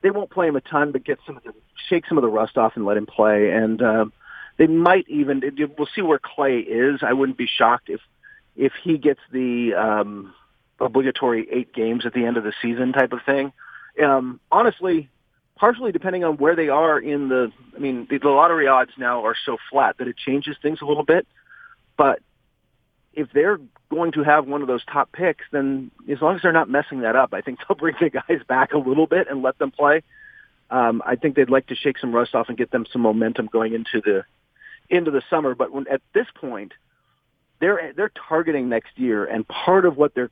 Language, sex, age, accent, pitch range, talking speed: English, male, 40-59, American, 120-155 Hz, 225 wpm